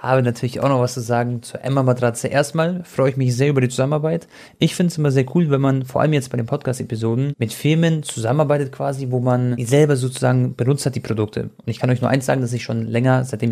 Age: 30-49